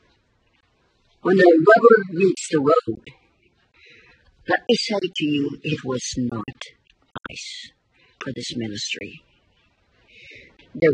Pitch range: 145-200 Hz